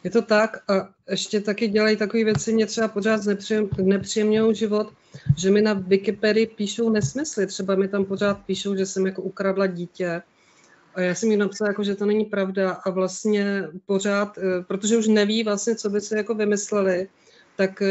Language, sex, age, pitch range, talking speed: Czech, female, 40-59, 195-215 Hz, 180 wpm